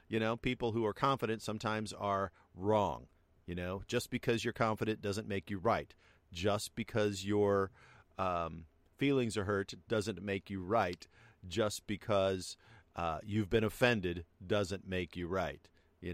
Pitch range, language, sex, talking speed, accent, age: 90-110 Hz, English, male, 150 wpm, American, 50-69